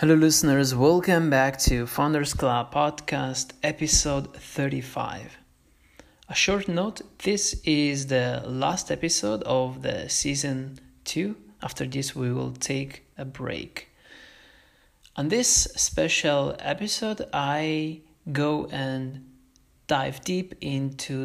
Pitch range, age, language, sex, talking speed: 130-160 Hz, 30-49, English, male, 110 wpm